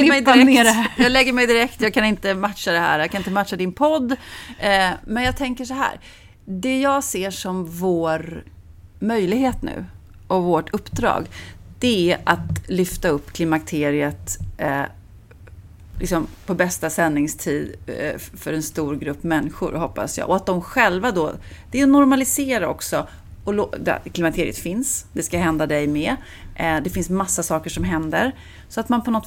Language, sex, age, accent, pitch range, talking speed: Swedish, female, 30-49, native, 150-205 Hz, 160 wpm